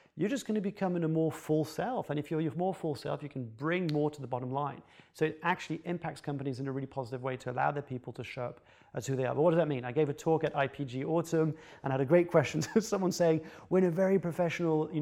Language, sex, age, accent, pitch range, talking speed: English, male, 30-49, British, 140-170 Hz, 290 wpm